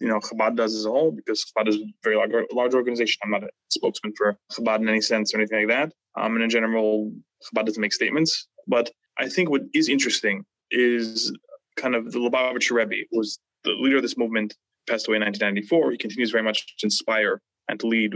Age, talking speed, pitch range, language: 20-39, 220 wpm, 110-130 Hz, English